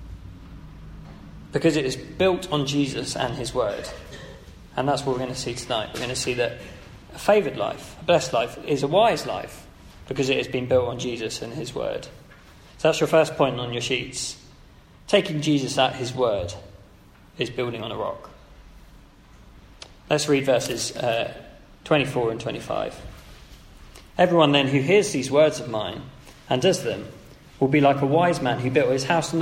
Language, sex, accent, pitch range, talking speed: English, male, British, 110-150 Hz, 180 wpm